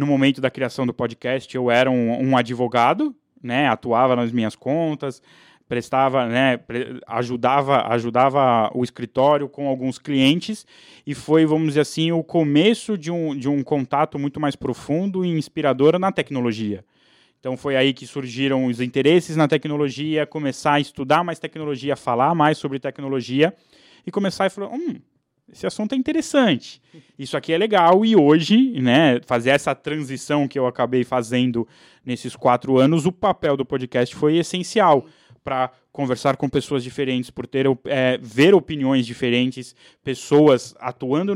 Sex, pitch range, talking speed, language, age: male, 130-155 Hz, 155 wpm, Portuguese, 20-39